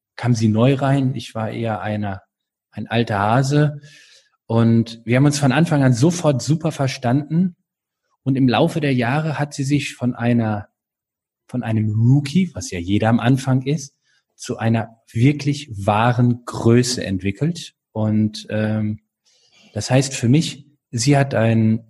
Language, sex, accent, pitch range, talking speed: German, male, German, 120-155 Hz, 150 wpm